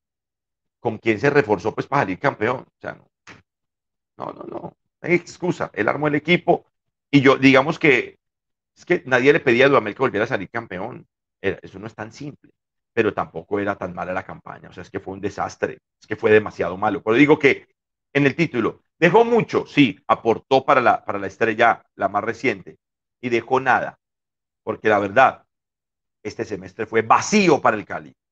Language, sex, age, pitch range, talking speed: Spanish, male, 40-59, 130-175 Hz, 195 wpm